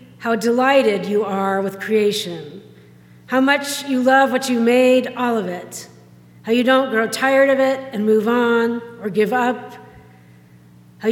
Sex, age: female, 50-69